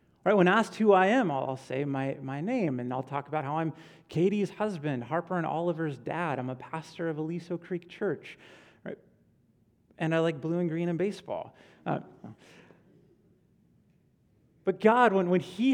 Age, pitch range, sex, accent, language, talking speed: 30-49, 155-200 Hz, male, American, English, 170 wpm